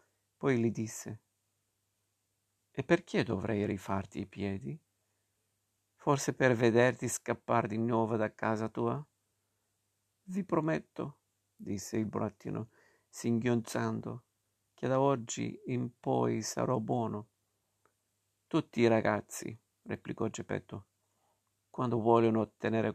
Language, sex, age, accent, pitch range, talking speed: Italian, male, 50-69, native, 105-125 Hz, 100 wpm